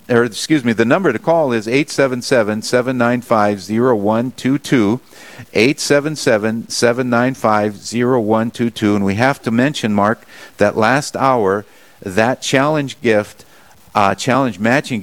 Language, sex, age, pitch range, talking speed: English, male, 50-69, 100-130 Hz, 100 wpm